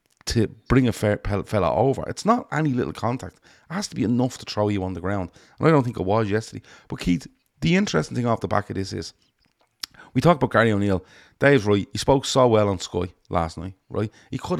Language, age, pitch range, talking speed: English, 30-49, 95-125 Hz, 240 wpm